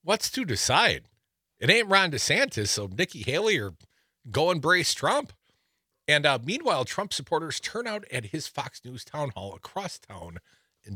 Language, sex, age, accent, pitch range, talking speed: English, male, 50-69, American, 105-160 Hz, 165 wpm